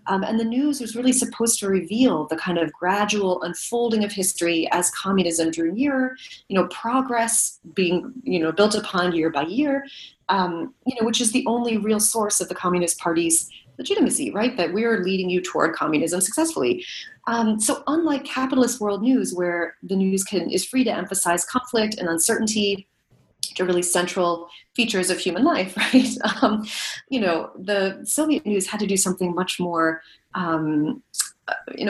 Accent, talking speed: American, 175 wpm